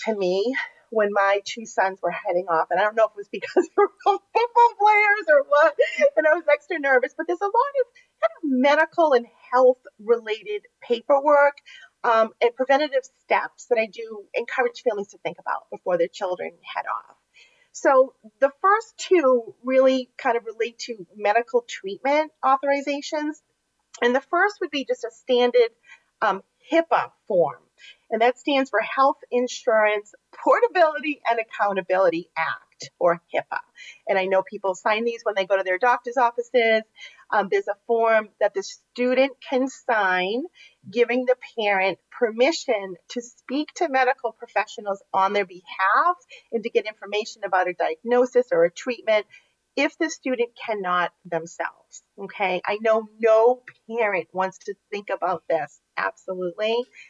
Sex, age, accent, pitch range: female, 40-59, American, 215-315 Hz